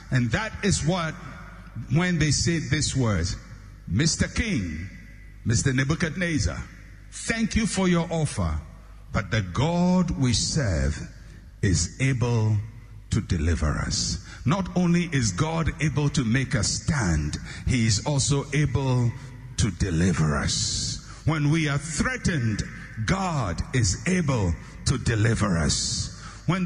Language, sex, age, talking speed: English, male, 60-79, 125 wpm